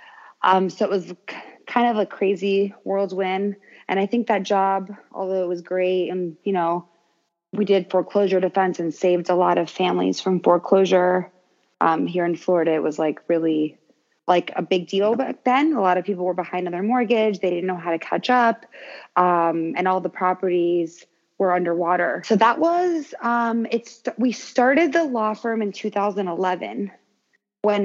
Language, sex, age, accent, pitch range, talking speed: English, female, 20-39, American, 180-220 Hz, 180 wpm